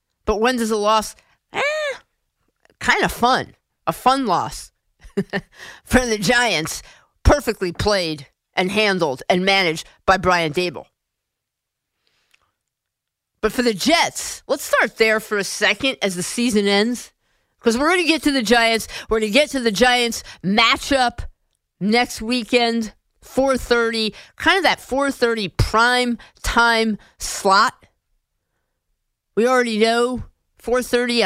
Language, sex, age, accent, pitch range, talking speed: English, female, 50-69, American, 200-245 Hz, 130 wpm